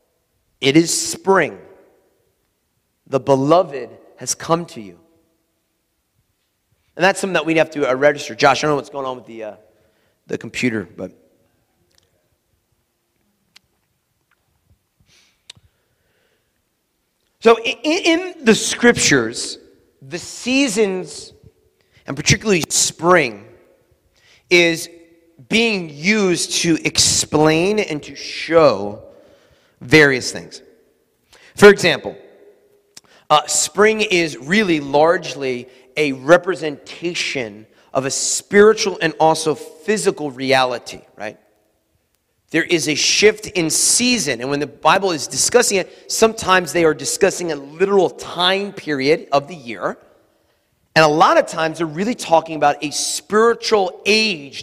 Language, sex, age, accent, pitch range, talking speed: English, male, 40-59, American, 135-195 Hz, 115 wpm